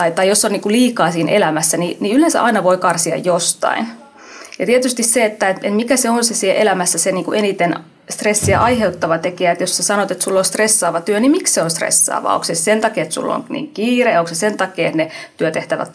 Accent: native